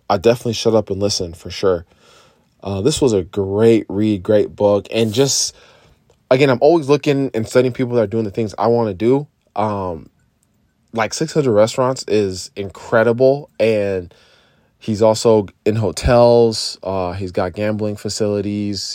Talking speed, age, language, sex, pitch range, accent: 160 wpm, 20-39, English, male, 100-115 Hz, American